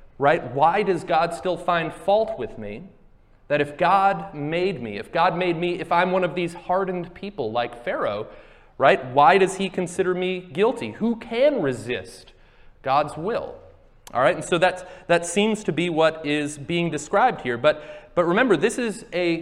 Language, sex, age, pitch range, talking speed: English, male, 30-49, 150-190 Hz, 180 wpm